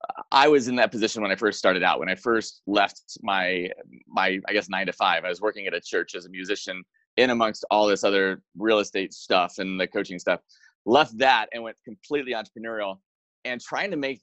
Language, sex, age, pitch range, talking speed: English, male, 30-49, 105-135 Hz, 220 wpm